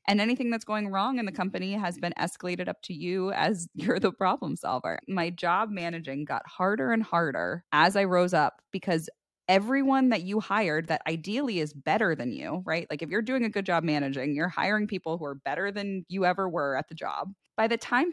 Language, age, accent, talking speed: English, 20-39, American, 220 wpm